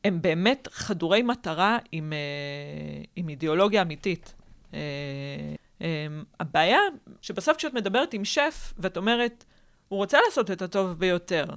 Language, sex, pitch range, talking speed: Hebrew, female, 155-195 Hz, 130 wpm